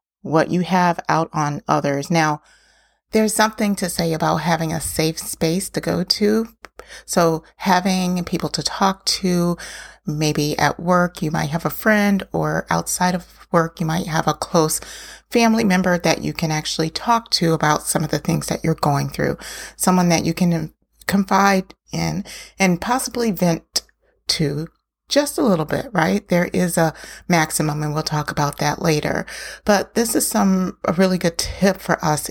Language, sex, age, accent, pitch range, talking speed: English, female, 30-49, American, 155-185 Hz, 175 wpm